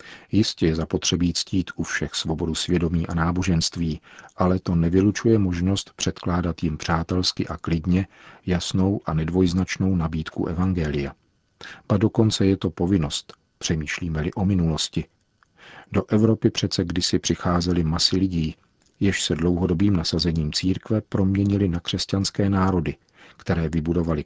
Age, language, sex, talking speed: 50-69, Czech, male, 125 wpm